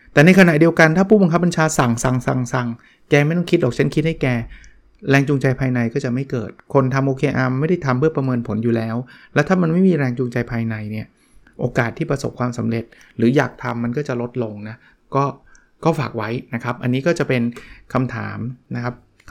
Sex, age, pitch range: male, 20-39, 120-145 Hz